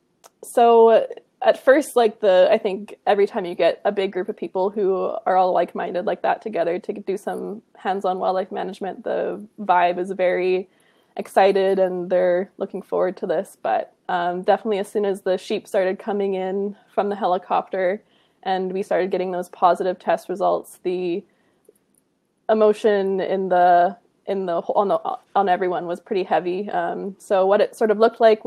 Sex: female